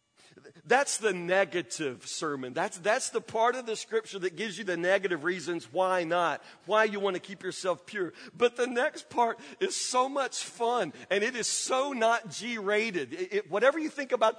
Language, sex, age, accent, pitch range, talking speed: English, male, 40-59, American, 215-290 Hz, 190 wpm